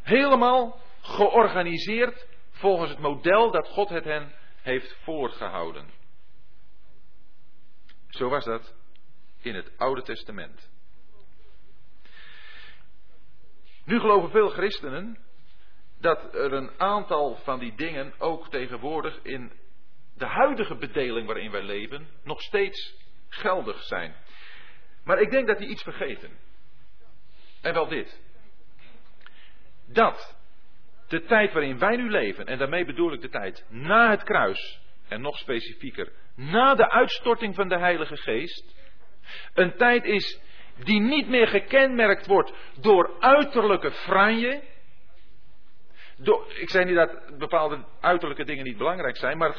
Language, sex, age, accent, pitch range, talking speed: Dutch, male, 40-59, Dutch, 160-245 Hz, 120 wpm